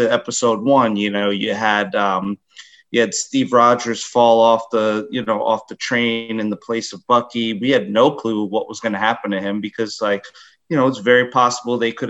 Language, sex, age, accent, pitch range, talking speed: English, male, 30-49, American, 105-130 Hz, 220 wpm